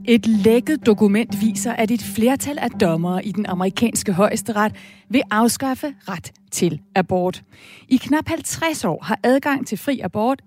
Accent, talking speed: native, 155 wpm